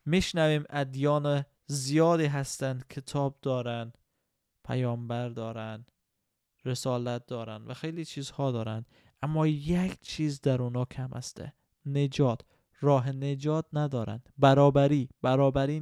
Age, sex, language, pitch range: 20-39, male, Persian, 125-150 Hz